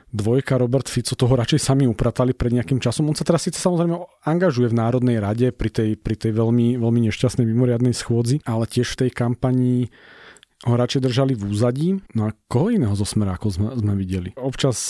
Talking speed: 195 wpm